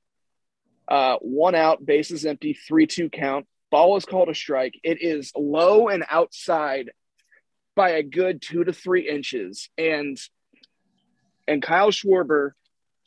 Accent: American